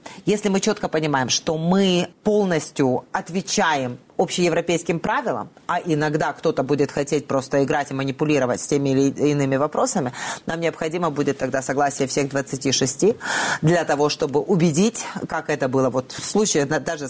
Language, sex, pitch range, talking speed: Russian, female, 145-180 Hz, 145 wpm